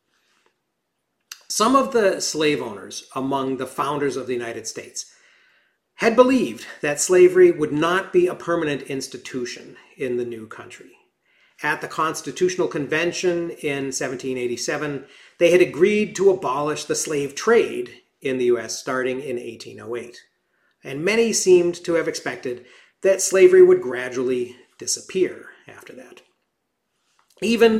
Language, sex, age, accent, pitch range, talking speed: English, male, 40-59, American, 130-180 Hz, 130 wpm